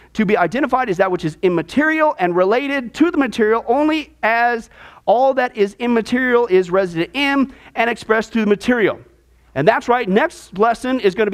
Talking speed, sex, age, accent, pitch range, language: 185 wpm, male, 40-59, American, 185-255 Hz, English